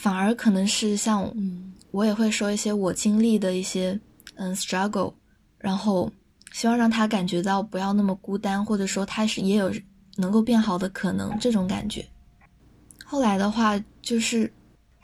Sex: female